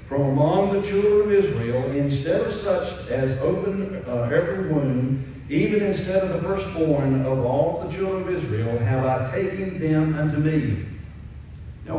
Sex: male